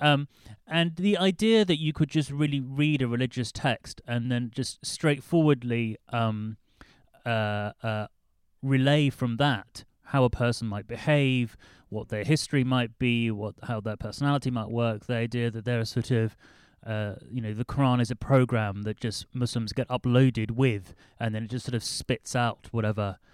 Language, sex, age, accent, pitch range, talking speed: English, male, 30-49, British, 110-140 Hz, 175 wpm